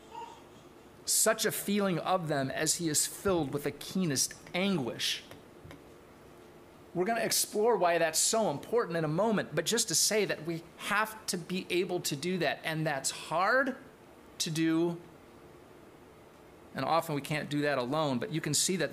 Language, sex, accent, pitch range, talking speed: English, male, American, 150-195 Hz, 170 wpm